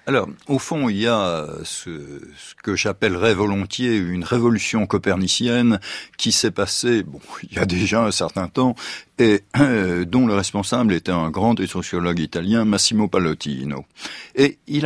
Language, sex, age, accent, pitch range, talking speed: French, male, 60-79, French, 90-125 Hz, 160 wpm